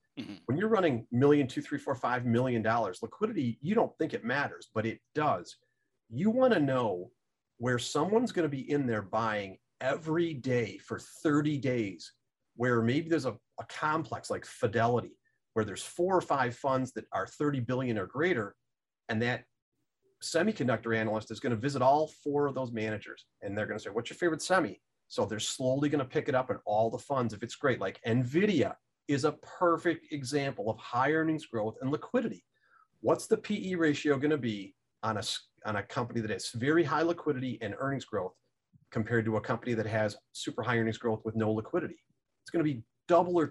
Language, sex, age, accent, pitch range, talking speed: English, male, 40-59, American, 115-160 Hz, 195 wpm